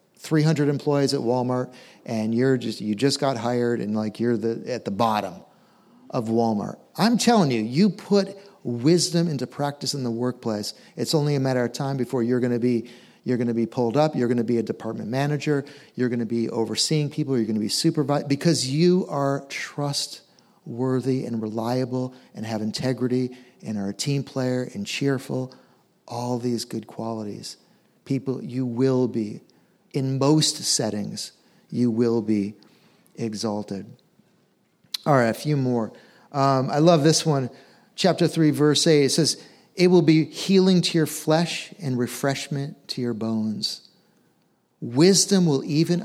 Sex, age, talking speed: male, 50-69, 165 wpm